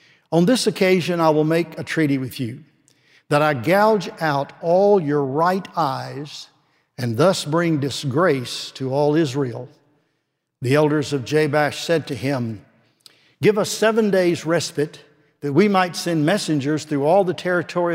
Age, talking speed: 60-79, 155 wpm